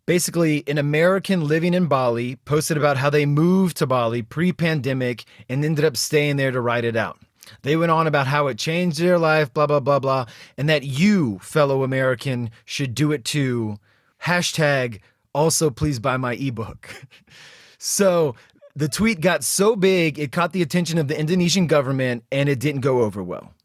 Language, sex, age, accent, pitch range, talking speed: English, male, 30-49, American, 130-170 Hz, 185 wpm